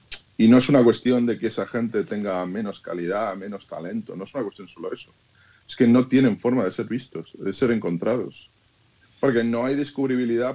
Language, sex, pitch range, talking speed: Spanish, male, 110-130 Hz, 200 wpm